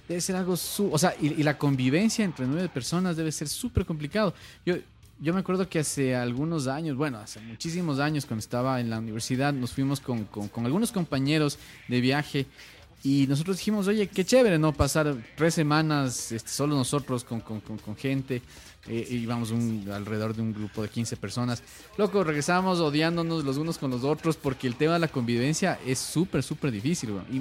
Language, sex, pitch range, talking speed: Spanish, male, 120-155 Hz, 195 wpm